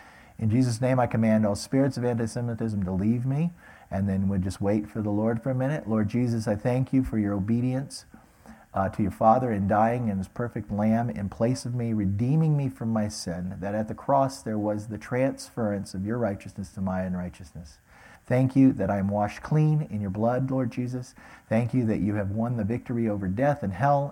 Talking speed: 220 wpm